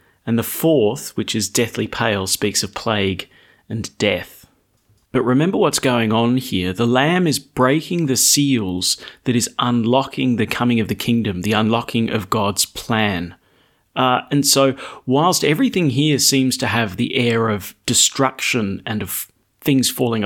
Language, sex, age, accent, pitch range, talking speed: English, male, 40-59, Australian, 105-135 Hz, 160 wpm